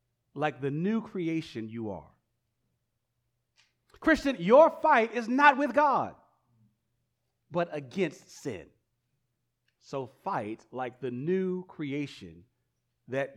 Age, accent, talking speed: 40-59, American, 105 wpm